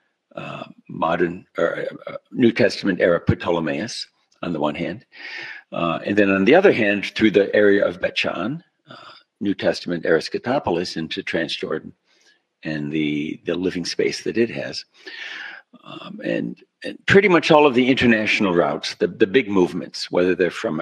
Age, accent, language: 60-79, American, English